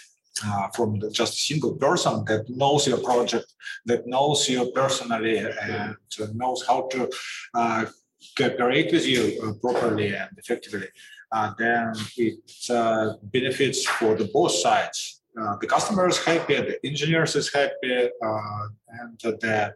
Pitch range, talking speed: 115-145 Hz, 145 wpm